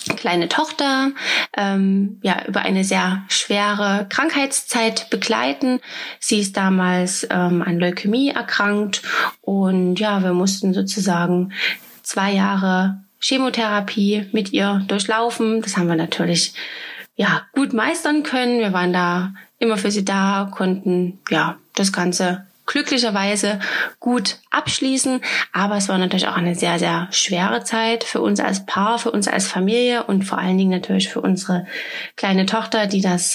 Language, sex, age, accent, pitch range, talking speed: German, female, 20-39, German, 190-225 Hz, 140 wpm